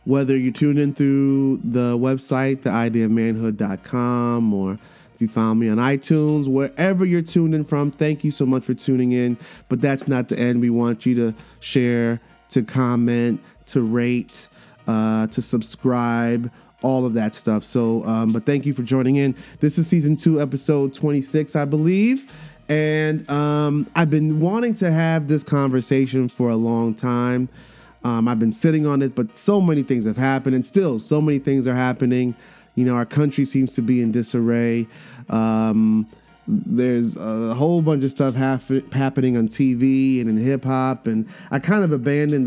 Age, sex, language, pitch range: 20-39, male, English, 120-145 Hz